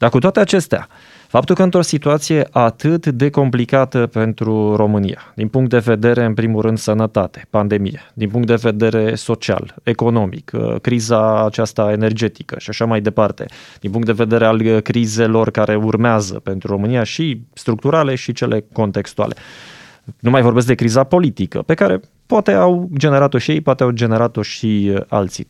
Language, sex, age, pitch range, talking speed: Romanian, male, 20-39, 110-135 Hz, 160 wpm